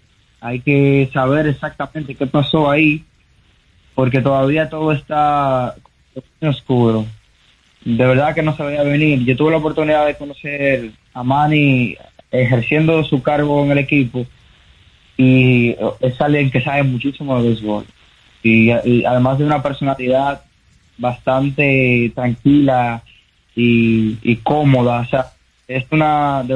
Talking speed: 125 wpm